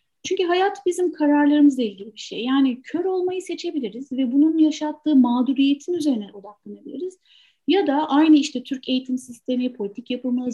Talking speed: 150 wpm